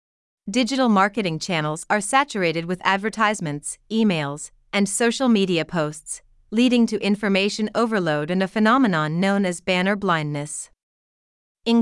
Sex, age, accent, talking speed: female, 30-49, American, 120 wpm